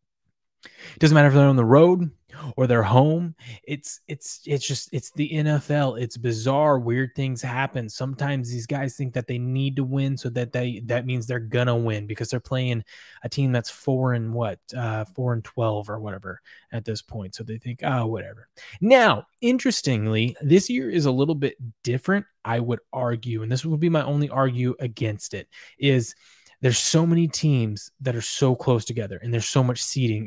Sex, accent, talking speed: male, American, 200 wpm